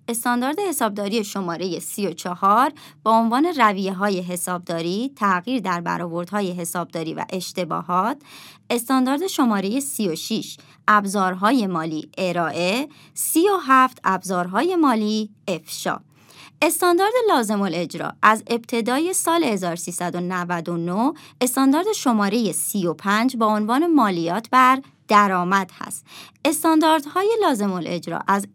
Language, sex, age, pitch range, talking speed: Persian, male, 30-49, 180-255 Hz, 95 wpm